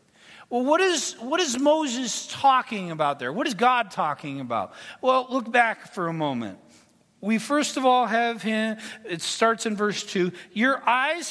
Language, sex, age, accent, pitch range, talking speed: English, male, 50-69, American, 210-275 Hz, 175 wpm